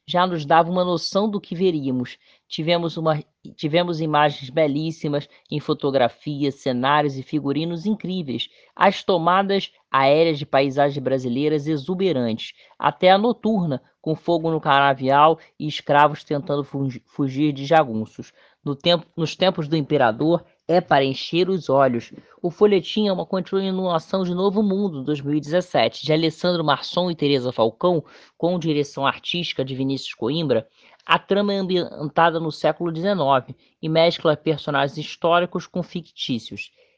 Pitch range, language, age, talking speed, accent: 140-175 Hz, Portuguese, 20-39, 135 wpm, Brazilian